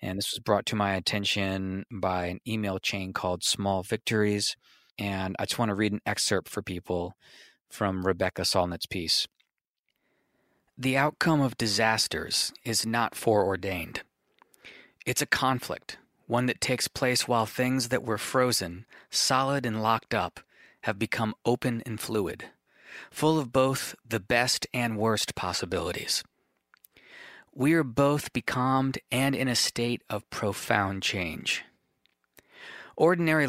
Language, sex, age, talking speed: English, male, 30-49, 135 wpm